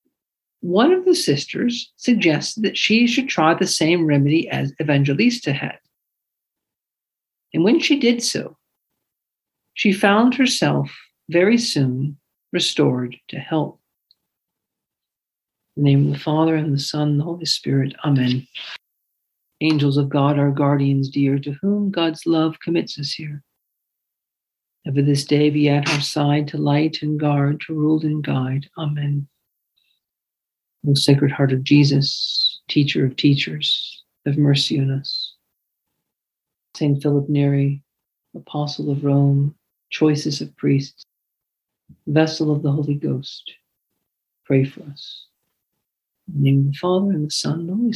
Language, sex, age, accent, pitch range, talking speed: English, male, 60-79, American, 140-180 Hz, 140 wpm